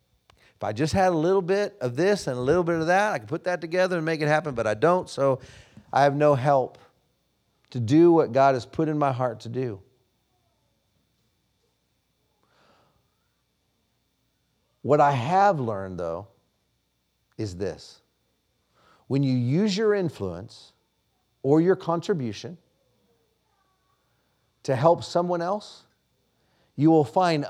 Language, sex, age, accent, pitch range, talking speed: English, male, 40-59, American, 115-170 Hz, 140 wpm